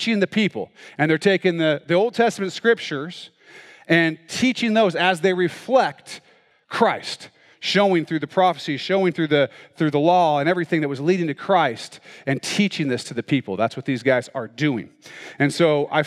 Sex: male